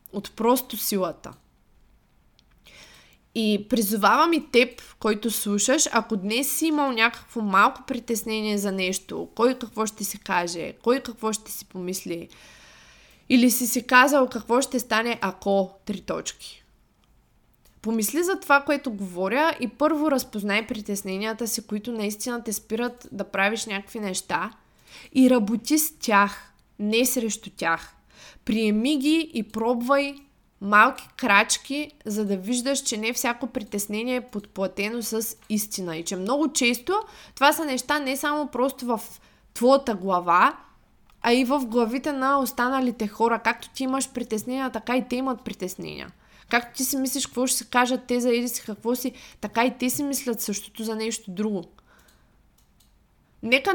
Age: 20-39